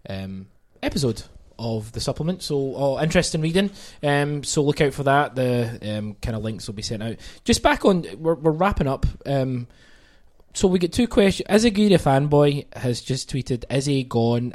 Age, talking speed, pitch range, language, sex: 20-39, 195 wpm, 115-155 Hz, English, male